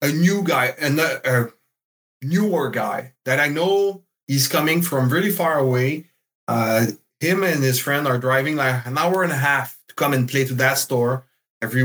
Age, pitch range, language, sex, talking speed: 30-49, 120-160 Hz, English, male, 185 wpm